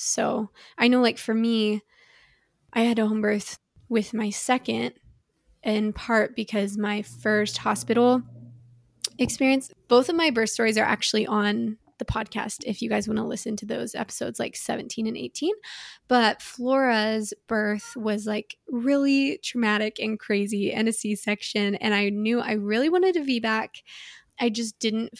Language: English